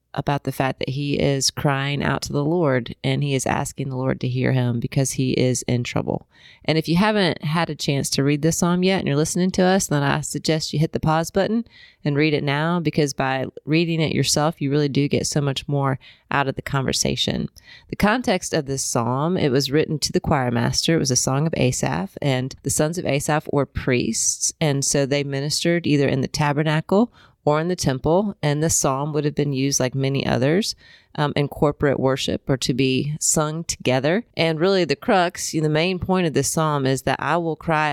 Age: 30-49